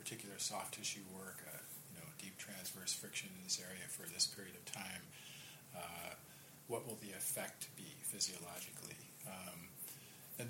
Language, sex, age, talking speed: English, male, 40-59, 155 wpm